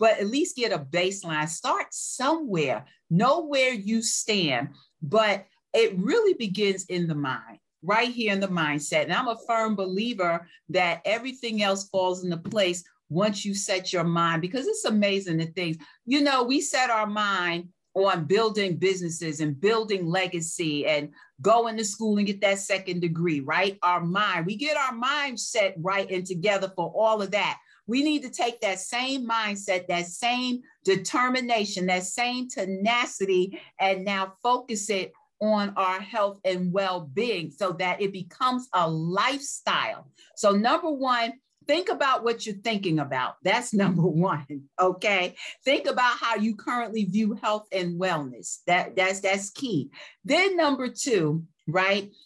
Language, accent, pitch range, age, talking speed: English, American, 180-235 Hz, 50-69, 160 wpm